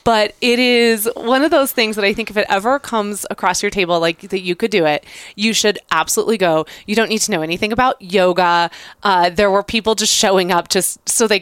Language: English